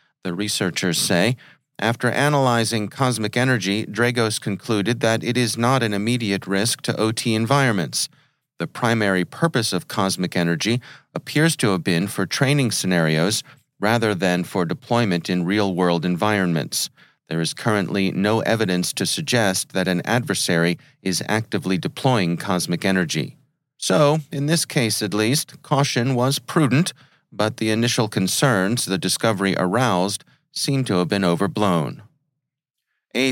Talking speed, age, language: 135 wpm, 40-59, English